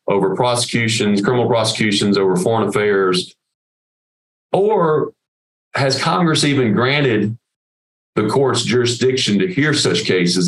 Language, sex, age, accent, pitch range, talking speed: English, male, 40-59, American, 100-135 Hz, 110 wpm